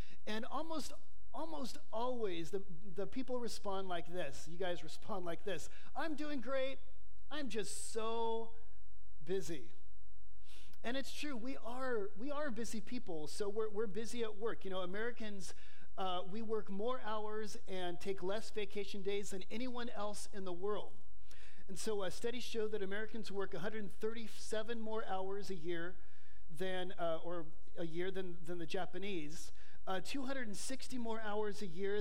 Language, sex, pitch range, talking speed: English, male, 175-230 Hz, 155 wpm